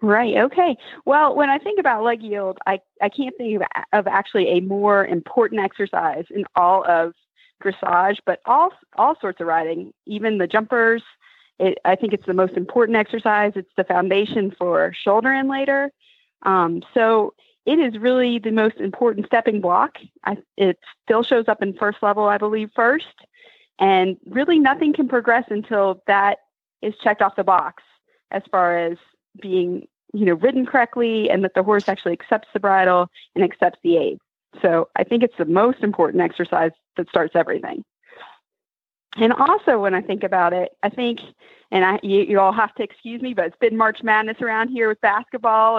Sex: female